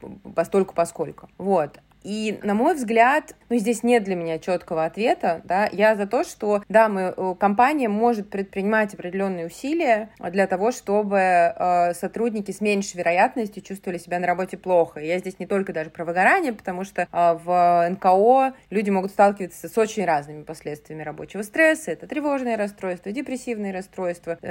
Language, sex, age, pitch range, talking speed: Russian, female, 30-49, 185-230 Hz, 155 wpm